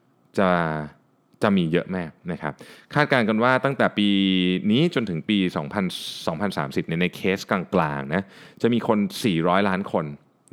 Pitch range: 90-120 Hz